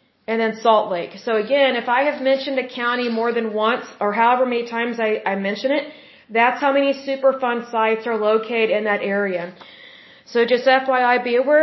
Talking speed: 195 wpm